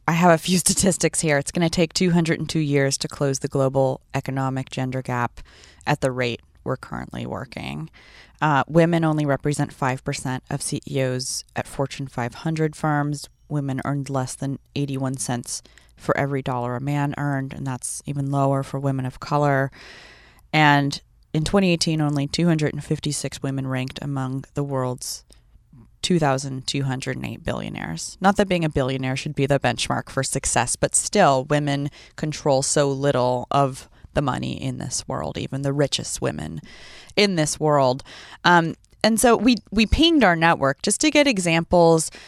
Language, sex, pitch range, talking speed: English, female, 135-175 Hz, 160 wpm